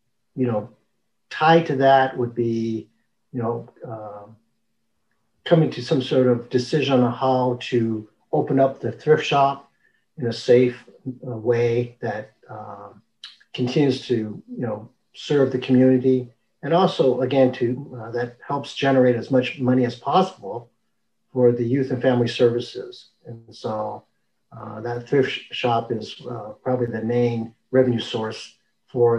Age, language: 50-69, English